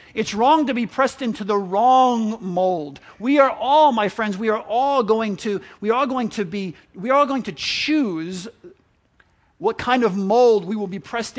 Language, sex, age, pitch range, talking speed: English, male, 40-59, 205-265 Hz, 200 wpm